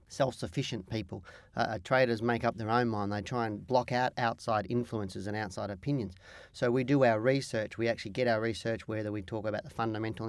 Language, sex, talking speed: English, male, 205 wpm